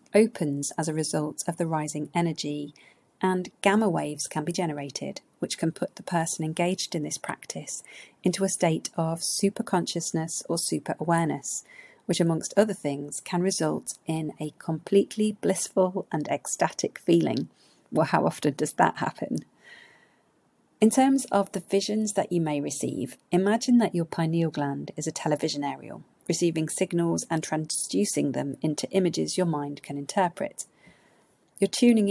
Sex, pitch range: female, 150-195 Hz